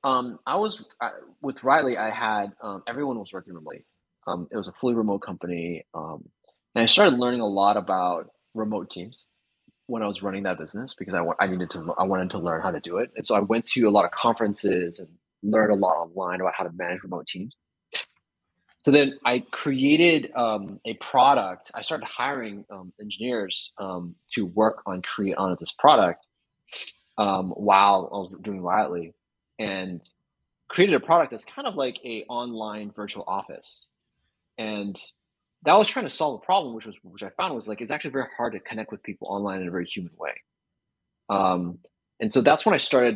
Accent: American